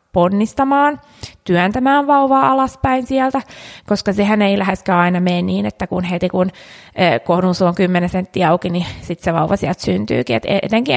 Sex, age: female, 20-39